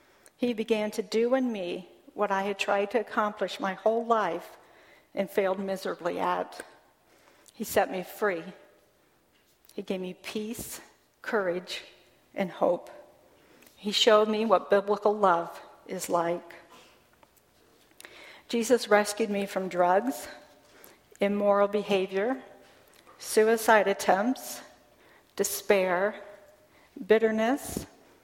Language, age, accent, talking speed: English, 50-69, American, 105 wpm